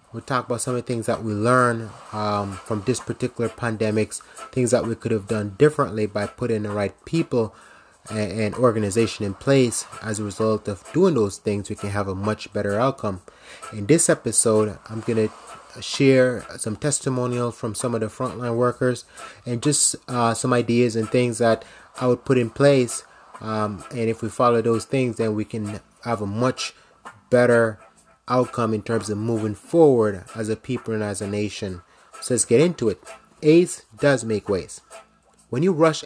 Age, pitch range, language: 20-39, 110-140 Hz, English